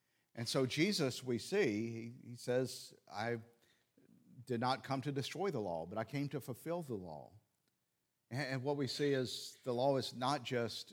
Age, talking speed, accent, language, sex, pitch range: 50-69, 175 wpm, American, English, male, 105-140 Hz